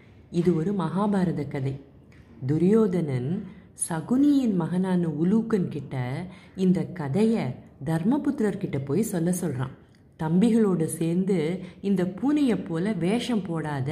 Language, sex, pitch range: Tamil, female, 150-195 Hz